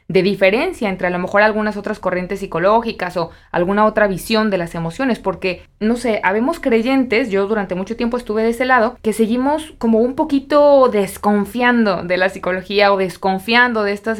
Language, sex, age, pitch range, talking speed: Spanish, female, 20-39, 195-235 Hz, 180 wpm